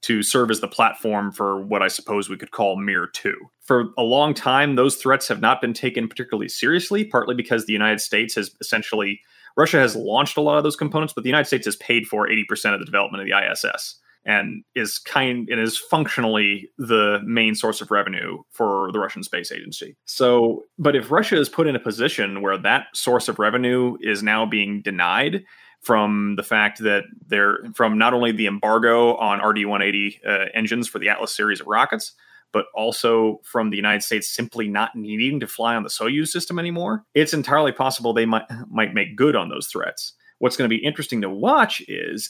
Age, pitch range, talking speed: 30-49, 105-130 Hz, 205 wpm